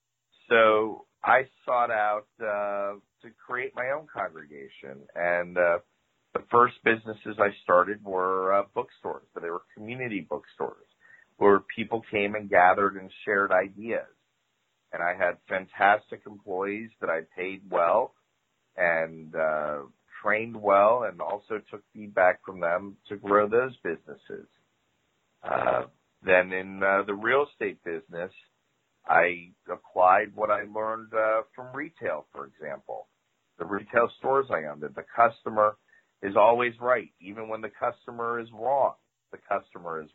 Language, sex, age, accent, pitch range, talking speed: English, male, 40-59, American, 95-115 Hz, 140 wpm